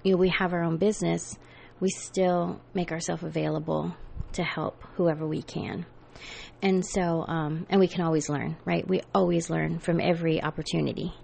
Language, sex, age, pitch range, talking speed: English, female, 30-49, 155-190 Hz, 160 wpm